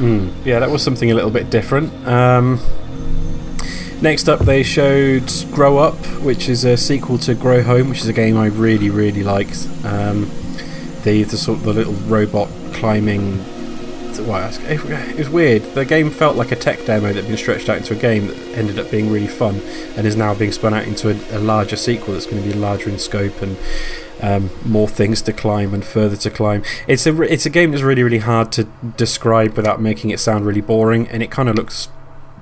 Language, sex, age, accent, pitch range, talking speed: English, male, 20-39, British, 105-125 Hz, 215 wpm